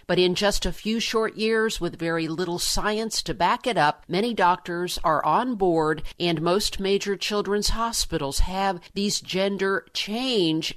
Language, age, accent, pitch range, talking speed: English, 50-69, American, 165-210 Hz, 155 wpm